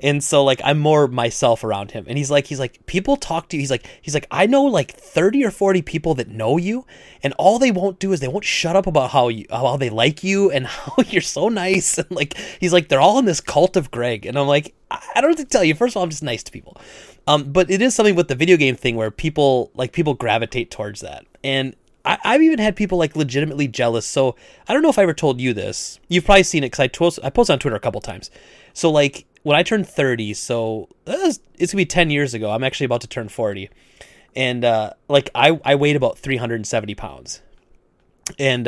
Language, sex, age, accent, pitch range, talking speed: English, male, 30-49, American, 120-180 Hz, 250 wpm